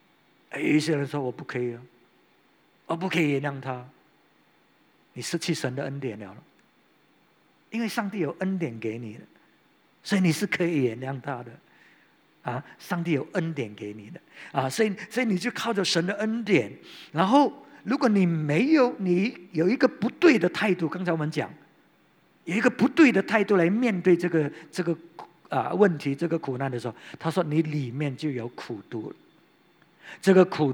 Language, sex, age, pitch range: English, male, 50-69, 135-185 Hz